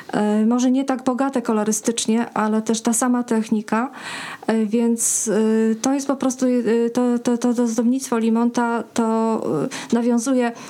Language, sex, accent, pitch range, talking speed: Polish, female, native, 205-235 Hz, 130 wpm